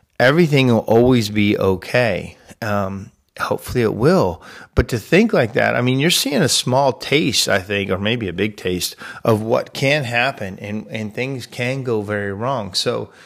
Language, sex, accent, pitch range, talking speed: English, male, American, 100-120 Hz, 180 wpm